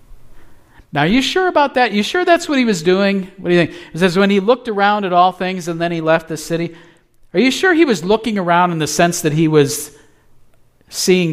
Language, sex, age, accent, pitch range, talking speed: English, male, 50-69, American, 135-185 Hz, 245 wpm